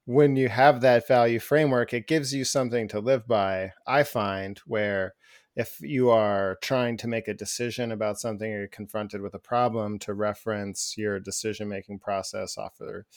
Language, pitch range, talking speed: English, 105-130 Hz, 180 wpm